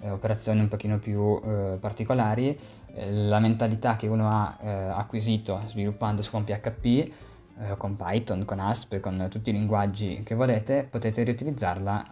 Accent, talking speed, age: native, 145 wpm, 20-39